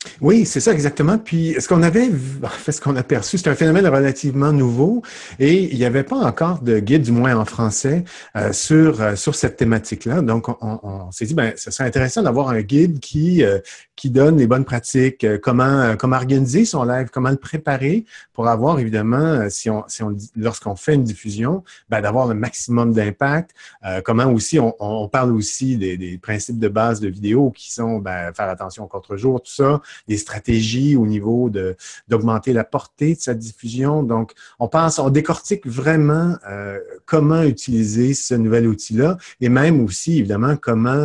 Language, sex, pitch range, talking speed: French, male, 110-150 Hz, 200 wpm